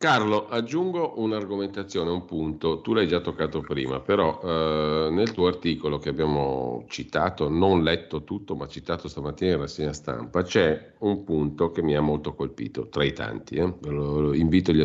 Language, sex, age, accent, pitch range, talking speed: Italian, male, 50-69, native, 75-95 Hz, 165 wpm